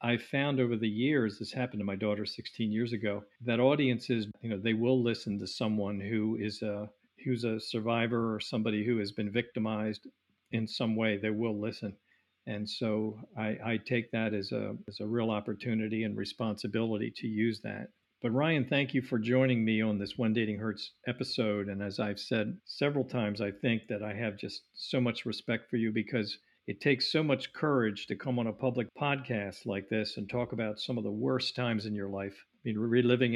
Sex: male